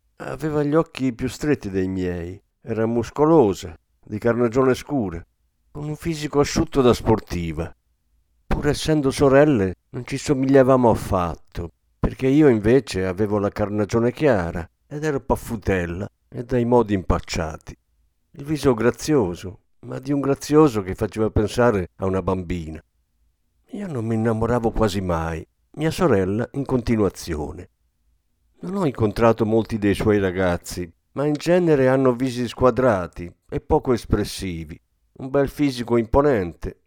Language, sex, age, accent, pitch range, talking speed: Italian, male, 50-69, native, 90-135 Hz, 135 wpm